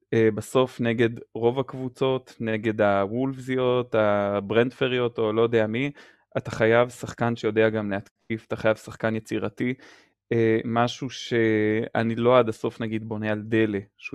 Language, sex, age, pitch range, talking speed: Hebrew, male, 20-39, 110-125 Hz, 135 wpm